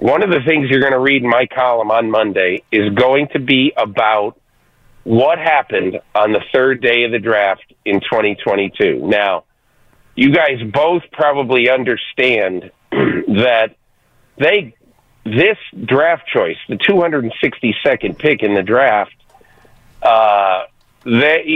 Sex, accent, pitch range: male, American, 120-160 Hz